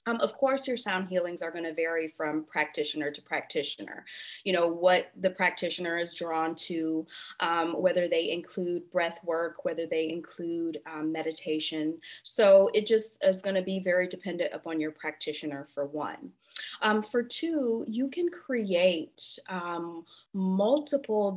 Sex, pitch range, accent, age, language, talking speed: female, 165-195 Hz, American, 30-49, English, 155 wpm